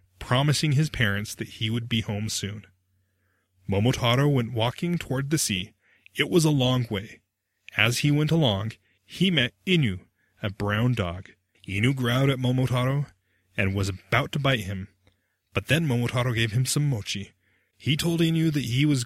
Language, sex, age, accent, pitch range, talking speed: English, male, 30-49, American, 100-135 Hz, 165 wpm